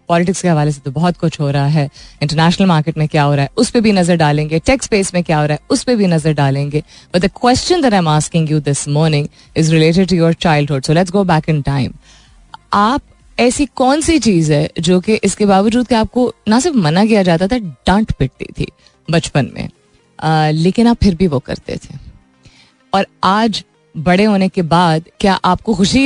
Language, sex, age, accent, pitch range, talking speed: Hindi, female, 20-39, native, 145-205 Hz, 215 wpm